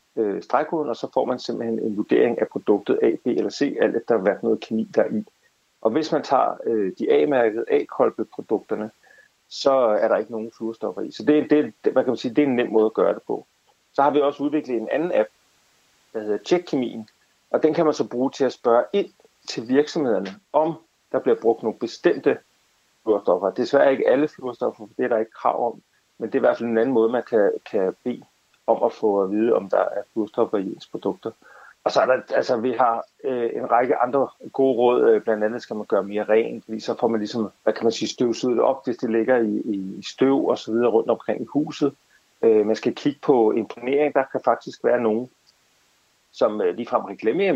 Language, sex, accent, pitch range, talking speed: Danish, male, native, 110-145 Hz, 225 wpm